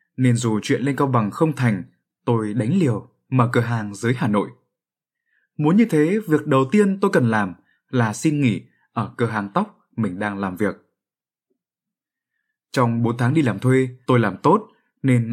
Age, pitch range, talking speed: 20-39, 120-170 Hz, 185 wpm